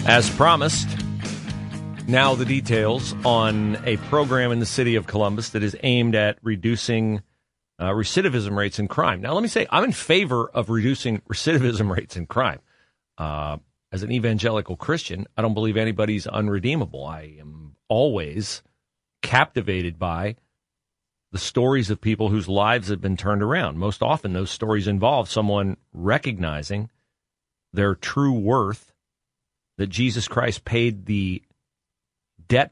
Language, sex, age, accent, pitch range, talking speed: English, male, 40-59, American, 95-125 Hz, 140 wpm